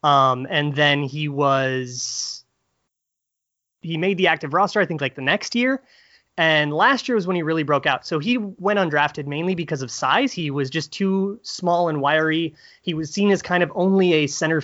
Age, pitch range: 30-49, 145-190 Hz